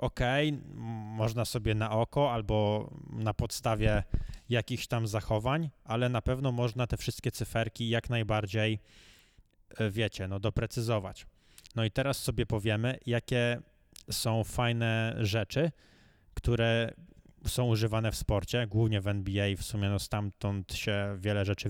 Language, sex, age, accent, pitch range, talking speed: Polish, male, 20-39, native, 105-120 Hz, 130 wpm